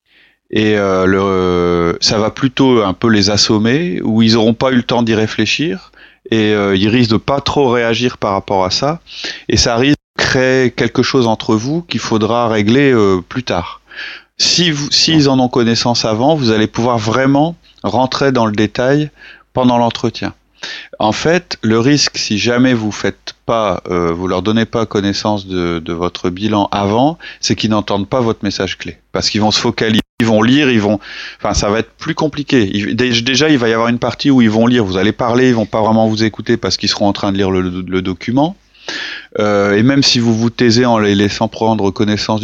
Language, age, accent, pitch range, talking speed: French, 30-49, French, 100-125 Hz, 210 wpm